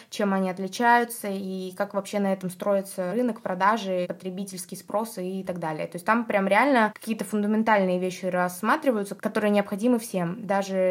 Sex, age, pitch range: female, 20-39, 190-220 Hz